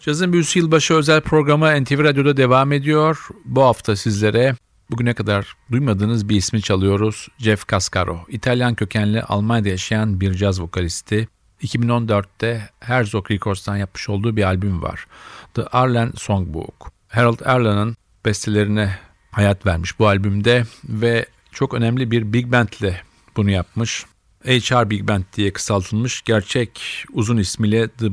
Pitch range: 100-120 Hz